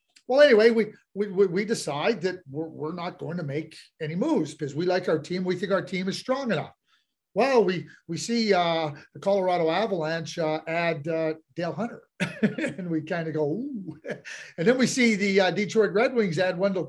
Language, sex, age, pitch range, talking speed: English, male, 40-59, 165-220 Hz, 205 wpm